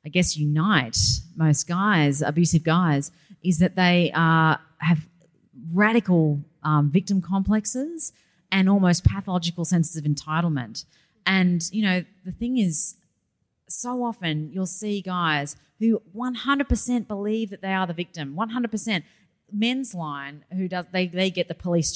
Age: 30-49